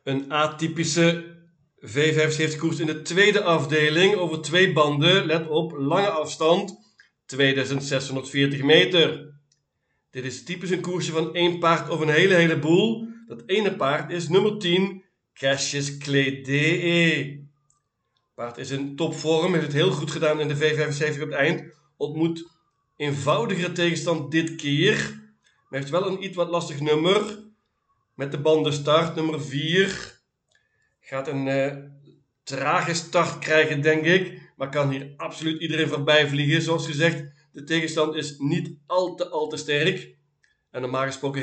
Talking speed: 150 wpm